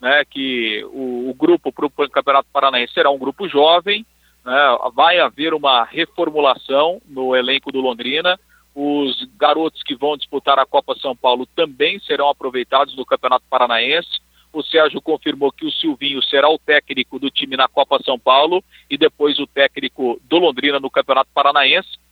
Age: 50-69